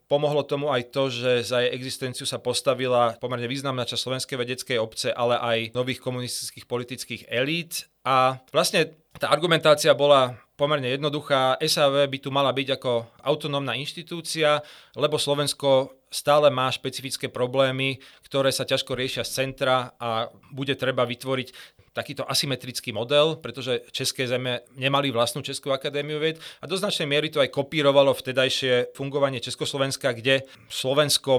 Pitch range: 125-145 Hz